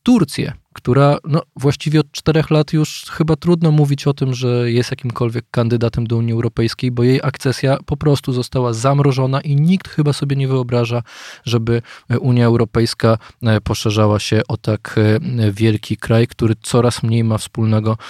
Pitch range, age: 115-150 Hz, 20-39